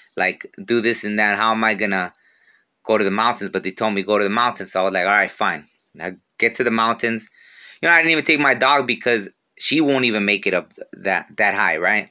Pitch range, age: 105-120 Hz, 20-39